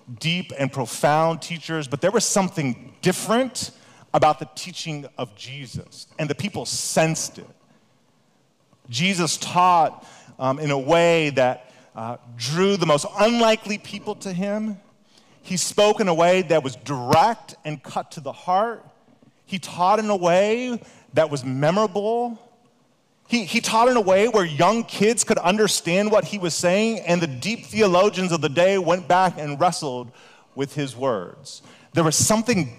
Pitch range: 135-195 Hz